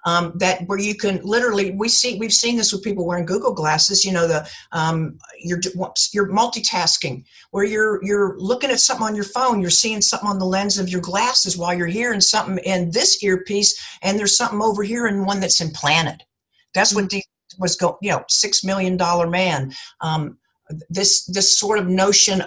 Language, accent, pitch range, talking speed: English, American, 170-210 Hz, 200 wpm